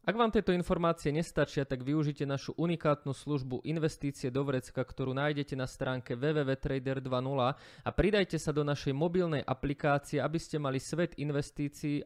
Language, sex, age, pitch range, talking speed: Slovak, male, 20-39, 130-150 Hz, 150 wpm